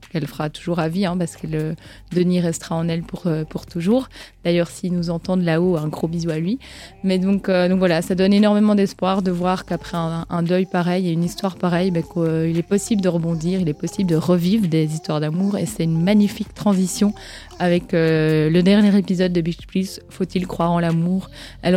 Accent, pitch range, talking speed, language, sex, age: French, 170-200 Hz, 220 wpm, French, female, 20-39